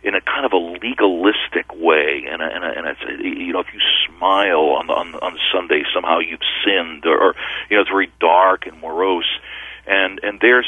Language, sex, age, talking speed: English, male, 50-69, 190 wpm